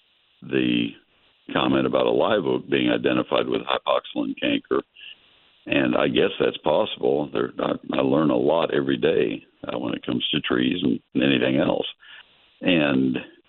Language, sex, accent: English, male, American